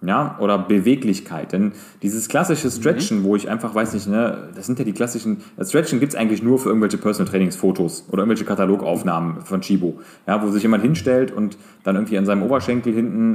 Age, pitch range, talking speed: 30-49, 105-140 Hz, 195 wpm